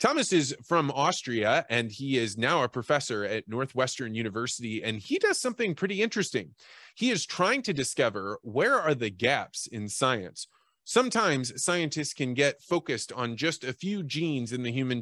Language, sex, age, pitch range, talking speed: English, male, 20-39, 115-170 Hz, 170 wpm